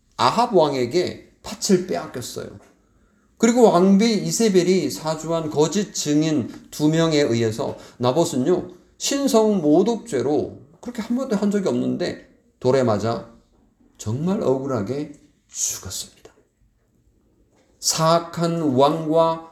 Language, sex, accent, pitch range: Korean, male, native, 140-215 Hz